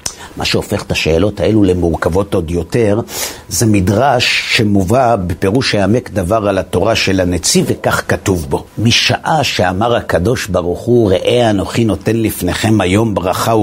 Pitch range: 100-130 Hz